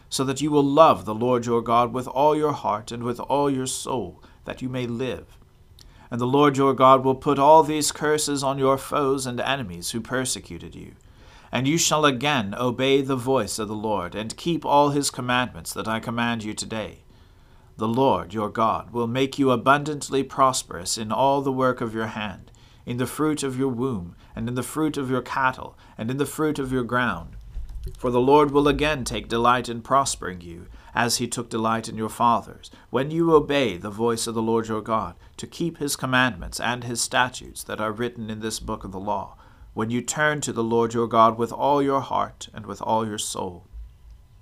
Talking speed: 210 wpm